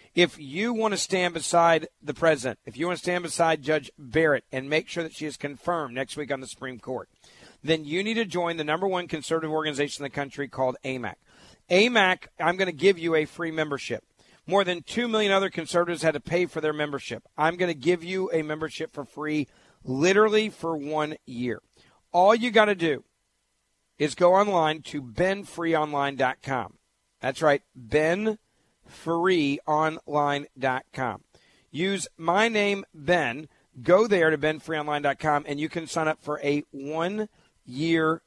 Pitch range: 145-180 Hz